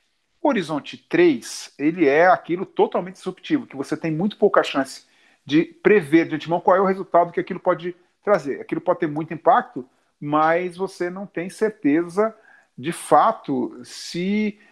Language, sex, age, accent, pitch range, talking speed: Portuguese, male, 40-59, Brazilian, 145-180 Hz, 160 wpm